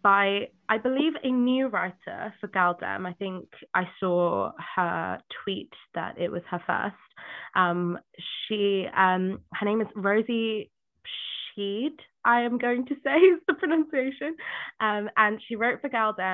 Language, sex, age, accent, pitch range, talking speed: English, female, 20-39, British, 170-200 Hz, 160 wpm